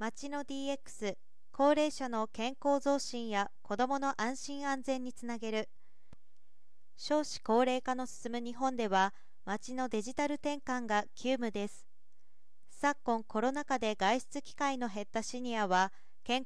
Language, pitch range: Japanese, 215-270 Hz